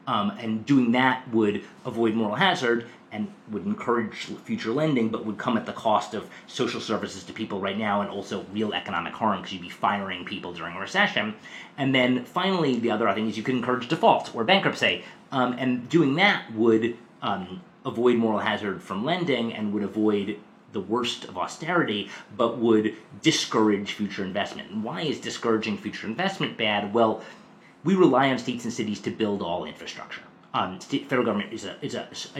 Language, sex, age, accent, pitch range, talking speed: English, male, 30-49, American, 105-135 Hz, 185 wpm